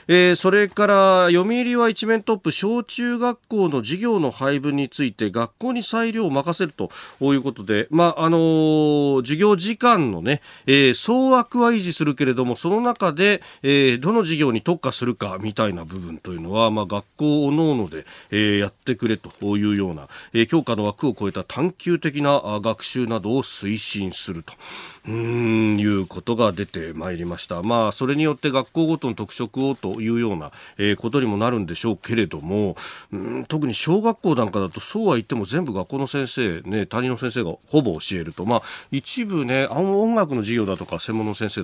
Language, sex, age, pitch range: Japanese, male, 40-59, 105-160 Hz